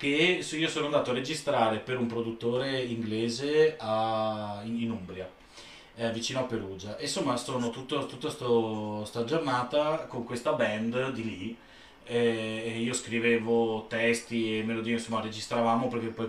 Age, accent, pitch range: 30-49, native, 110-120 Hz